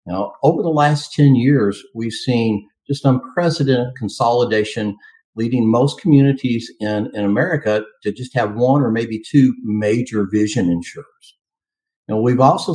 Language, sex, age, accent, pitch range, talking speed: English, male, 60-79, American, 110-140 Hz, 140 wpm